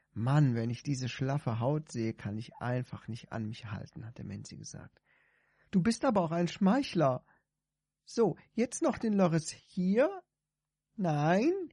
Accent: German